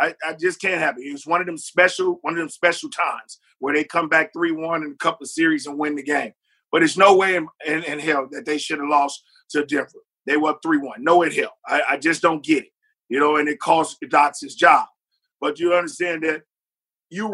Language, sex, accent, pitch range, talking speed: English, male, American, 165-220 Hz, 250 wpm